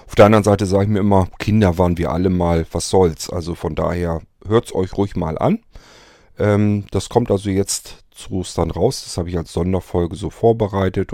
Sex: male